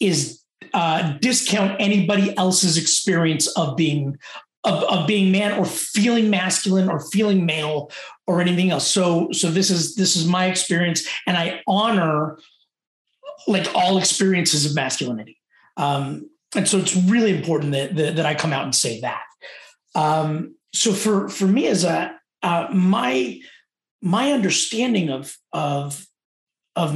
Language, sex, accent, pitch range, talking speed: English, male, American, 165-205 Hz, 145 wpm